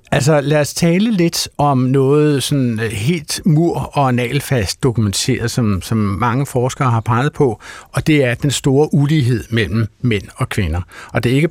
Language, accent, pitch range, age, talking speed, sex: Danish, native, 115-140 Hz, 50-69, 175 wpm, male